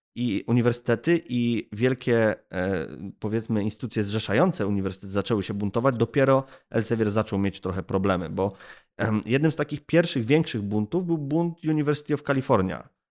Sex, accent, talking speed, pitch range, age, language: male, native, 140 wpm, 105-145 Hz, 20-39, Polish